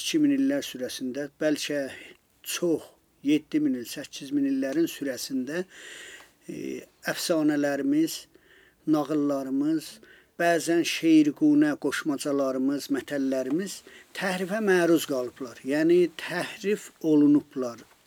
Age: 50-69